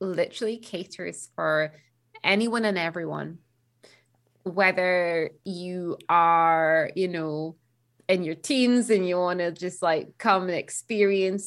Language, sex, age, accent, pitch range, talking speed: English, female, 20-39, British, 170-200 Hz, 120 wpm